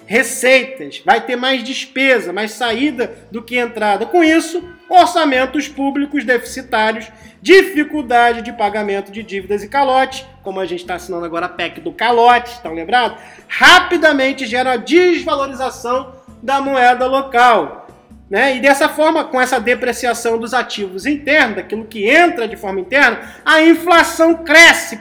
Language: Portuguese